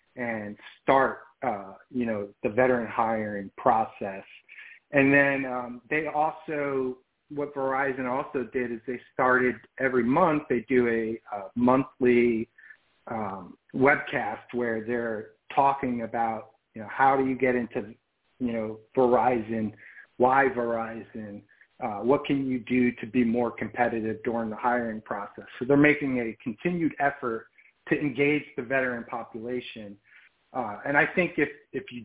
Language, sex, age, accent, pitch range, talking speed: English, male, 40-59, American, 115-135 Hz, 145 wpm